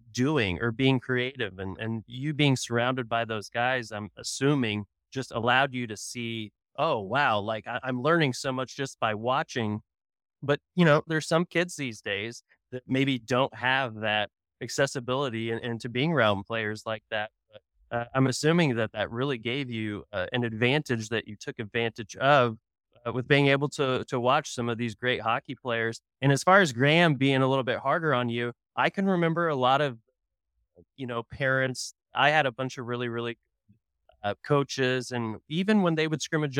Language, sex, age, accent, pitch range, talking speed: English, male, 20-39, American, 115-140 Hz, 190 wpm